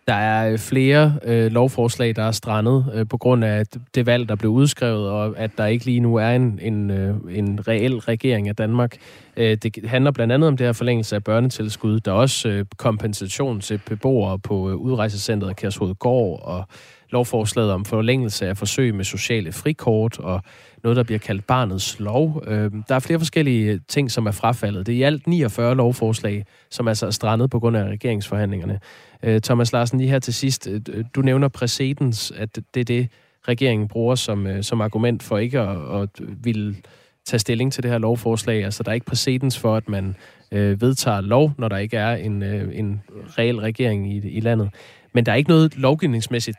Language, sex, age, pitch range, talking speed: Danish, male, 20-39, 105-125 Hz, 185 wpm